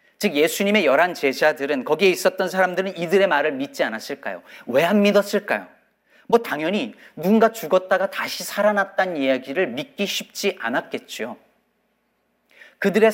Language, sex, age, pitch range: Korean, male, 40-59, 155-215 Hz